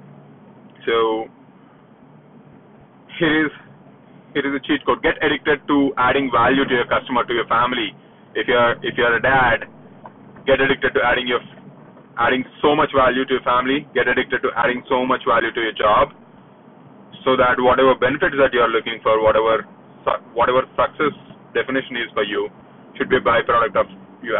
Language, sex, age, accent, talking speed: English, male, 30-49, Indian, 170 wpm